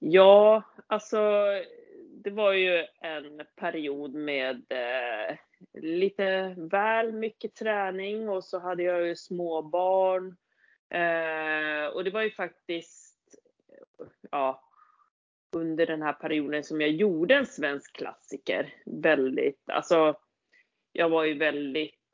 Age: 30-49